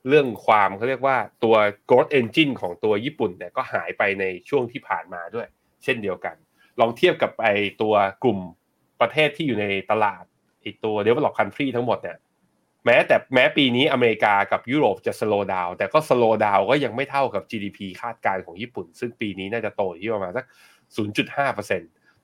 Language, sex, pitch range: Thai, male, 100-135 Hz